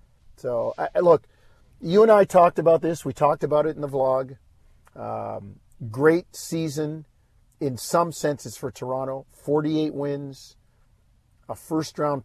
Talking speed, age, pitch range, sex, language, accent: 130 wpm, 50-69, 115-140 Hz, male, English, American